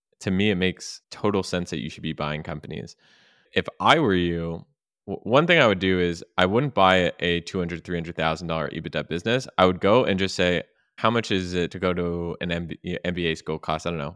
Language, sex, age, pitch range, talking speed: English, male, 20-39, 85-100 Hz, 210 wpm